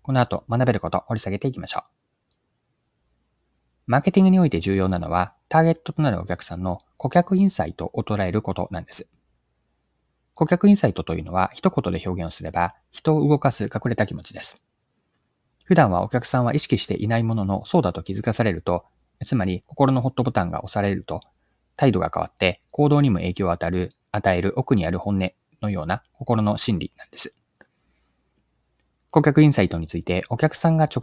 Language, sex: Japanese, male